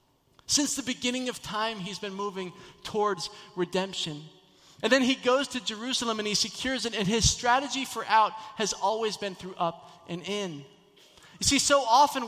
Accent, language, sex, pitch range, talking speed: American, English, male, 165-230 Hz, 175 wpm